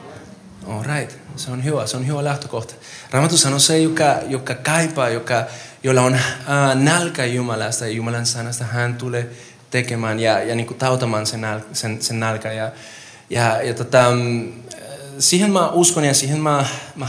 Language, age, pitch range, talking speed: Finnish, 20-39, 115-135 Hz, 165 wpm